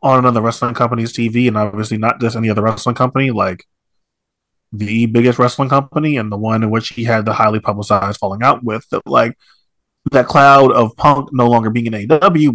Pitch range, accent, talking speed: 115-150 Hz, American, 200 wpm